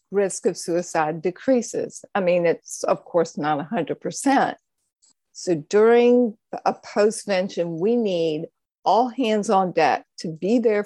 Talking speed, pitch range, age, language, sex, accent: 140 wpm, 175-230 Hz, 60-79, English, female, American